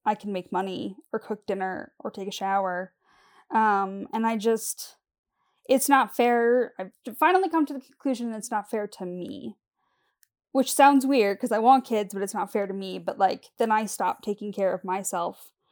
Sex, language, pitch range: female, English, 205-265 Hz